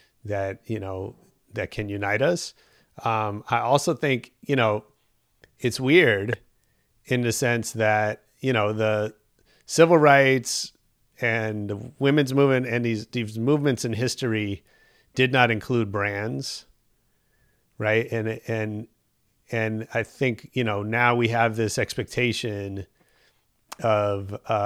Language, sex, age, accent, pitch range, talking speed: English, male, 30-49, American, 100-125 Hz, 125 wpm